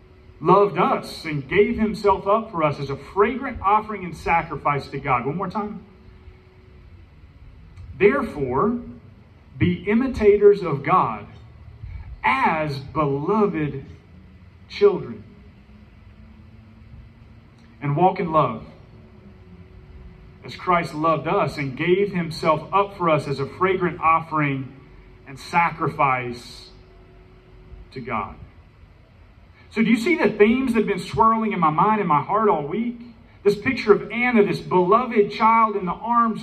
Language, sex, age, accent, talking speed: English, male, 40-59, American, 125 wpm